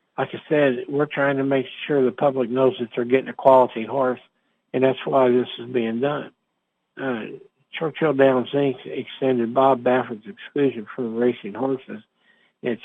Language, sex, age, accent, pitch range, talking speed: English, male, 60-79, American, 120-135 Hz, 170 wpm